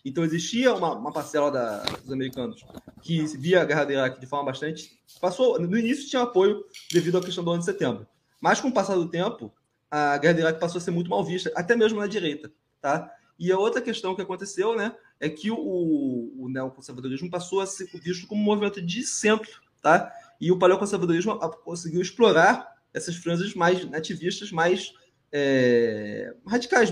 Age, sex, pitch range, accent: 20-39, male, 145-195 Hz, Brazilian